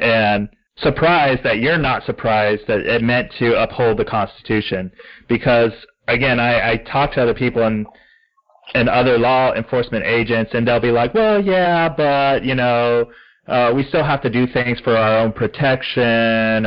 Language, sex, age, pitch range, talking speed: English, male, 30-49, 105-125 Hz, 170 wpm